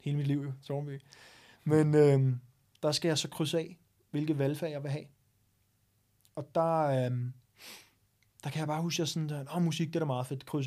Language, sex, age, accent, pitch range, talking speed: Danish, male, 30-49, native, 125-160 Hz, 215 wpm